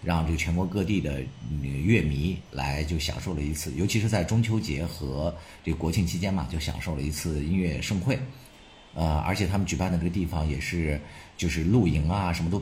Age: 50-69